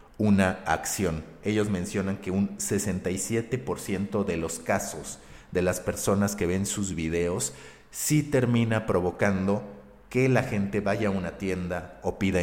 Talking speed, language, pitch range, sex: 140 wpm, Spanish, 90-110 Hz, male